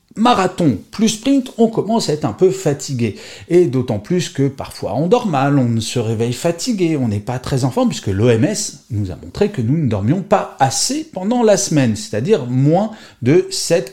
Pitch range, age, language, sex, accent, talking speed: 110-165 Hz, 40-59, French, male, French, 200 wpm